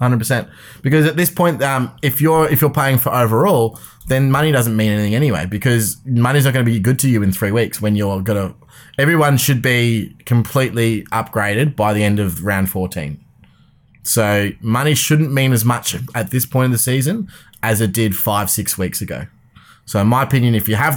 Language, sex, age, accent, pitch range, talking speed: English, male, 20-39, Australian, 105-130 Hz, 210 wpm